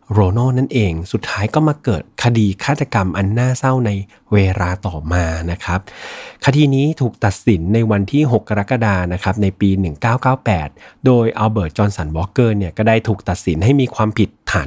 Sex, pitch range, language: male, 90-115 Hz, Thai